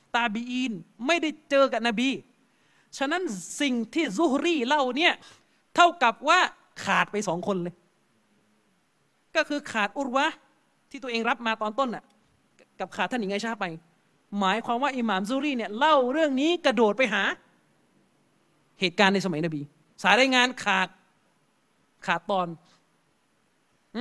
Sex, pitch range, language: male, 195-265 Hz, Thai